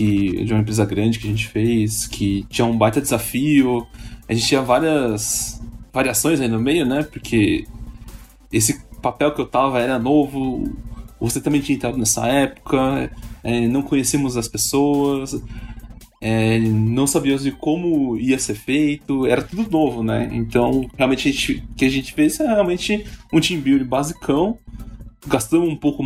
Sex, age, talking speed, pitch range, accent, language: male, 10-29, 160 wpm, 115-140 Hz, Brazilian, Portuguese